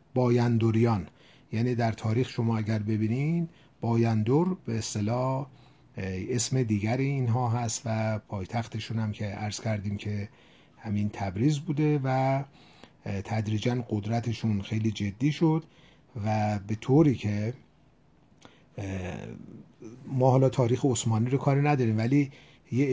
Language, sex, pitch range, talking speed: Persian, male, 105-135 Hz, 115 wpm